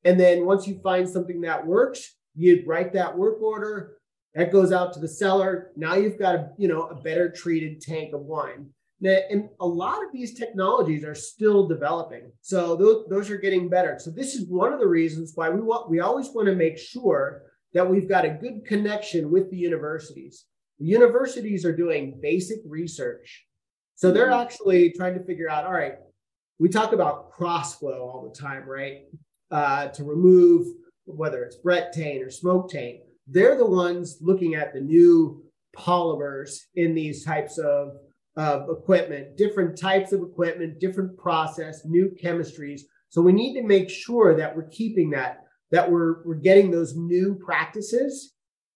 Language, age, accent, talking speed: English, 30-49, American, 175 wpm